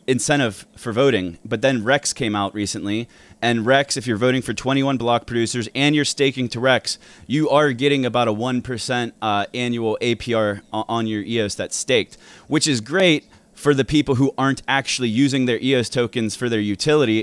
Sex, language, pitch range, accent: male, English, 110-140 Hz, American